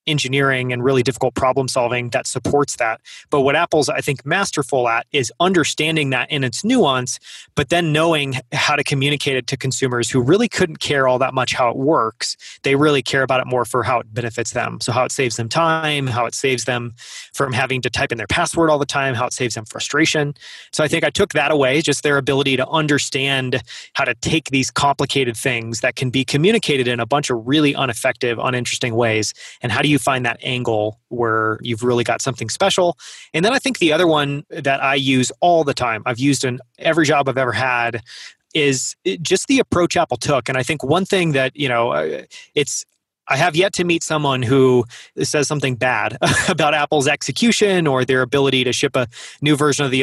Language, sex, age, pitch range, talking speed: English, male, 30-49, 125-150 Hz, 215 wpm